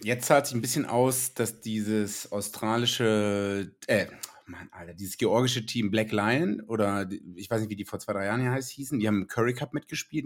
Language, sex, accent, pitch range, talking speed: German, male, German, 105-125 Hz, 215 wpm